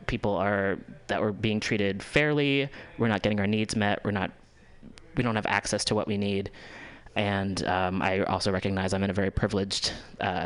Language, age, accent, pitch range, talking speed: English, 20-39, American, 95-110 Hz, 195 wpm